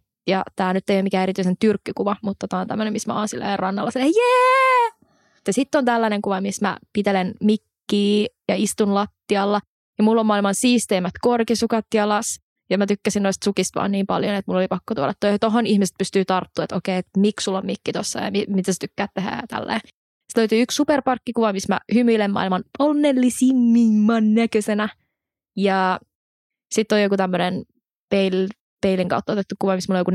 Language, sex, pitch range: Finnish, female, 195-230 Hz